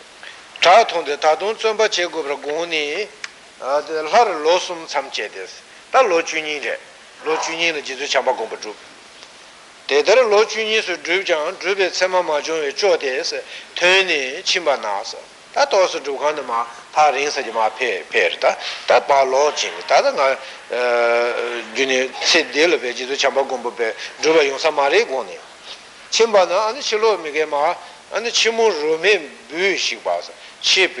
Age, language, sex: 60-79, Italian, male